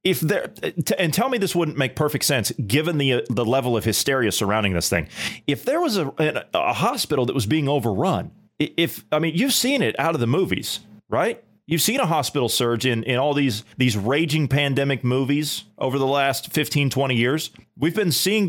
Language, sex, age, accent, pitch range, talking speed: English, male, 30-49, American, 110-145 Hz, 205 wpm